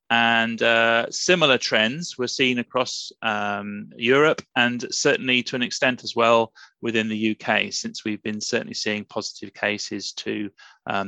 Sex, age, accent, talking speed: male, 30-49, British, 150 wpm